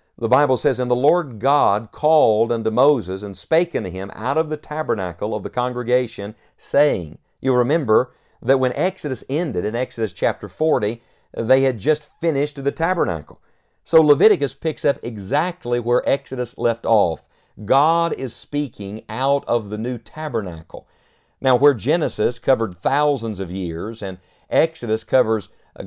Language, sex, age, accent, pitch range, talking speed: English, male, 50-69, American, 110-145 Hz, 155 wpm